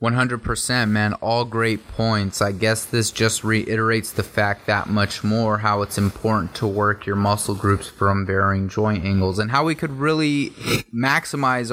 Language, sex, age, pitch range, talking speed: English, male, 20-39, 100-110 Hz, 170 wpm